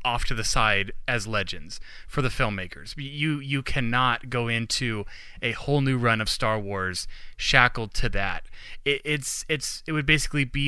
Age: 20-39